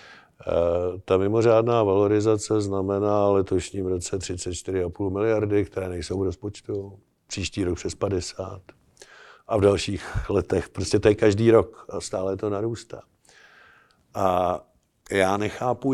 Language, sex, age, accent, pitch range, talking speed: Czech, male, 50-69, native, 95-115 Hz, 115 wpm